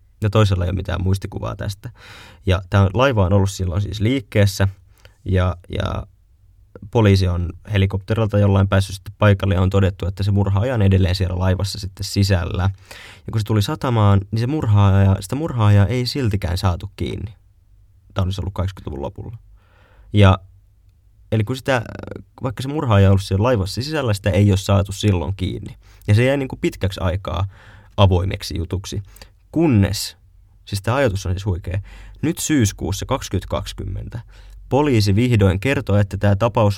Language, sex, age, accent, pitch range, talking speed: Finnish, male, 20-39, native, 95-105 Hz, 160 wpm